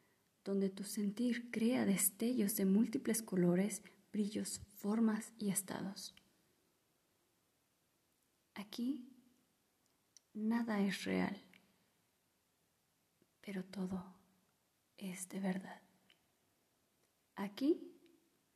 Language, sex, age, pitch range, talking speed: Spanish, female, 30-49, 190-230 Hz, 70 wpm